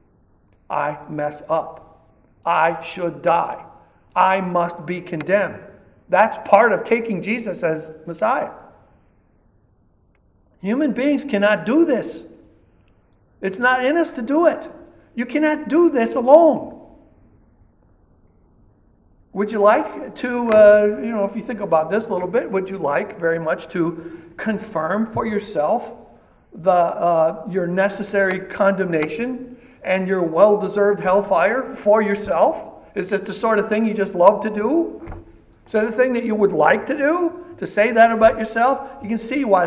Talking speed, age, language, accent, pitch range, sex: 150 wpm, 60-79, English, American, 165-230 Hz, male